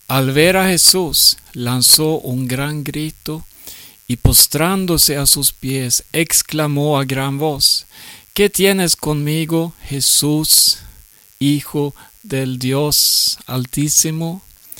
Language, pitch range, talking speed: Swedish, 130-160 Hz, 100 wpm